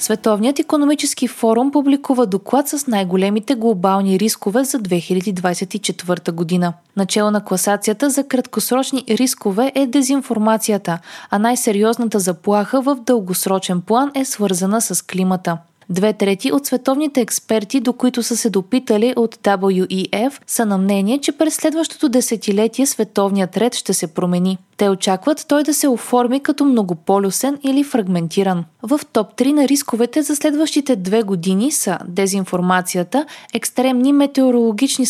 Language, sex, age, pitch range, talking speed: Bulgarian, female, 20-39, 195-265 Hz, 130 wpm